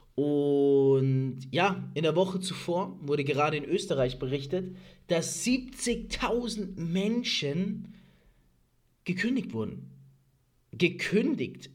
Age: 30-49